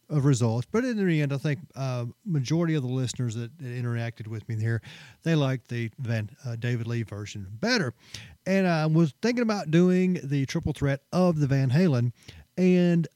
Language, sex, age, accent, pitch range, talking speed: English, male, 40-59, American, 120-170 Hz, 190 wpm